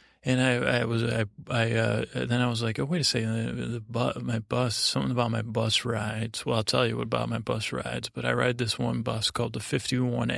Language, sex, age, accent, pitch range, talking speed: English, male, 30-49, American, 110-125 Hz, 250 wpm